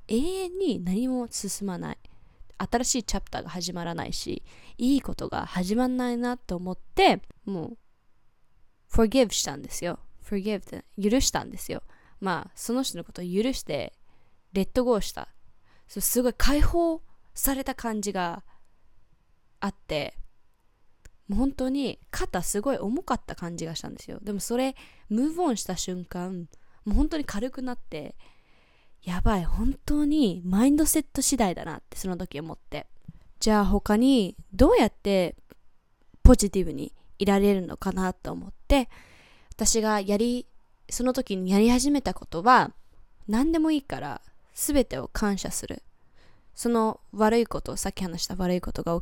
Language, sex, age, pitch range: Japanese, female, 20-39, 185-255 Hz